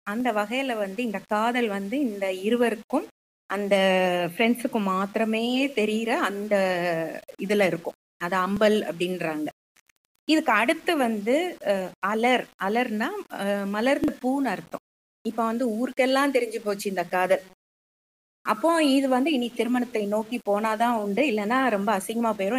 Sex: female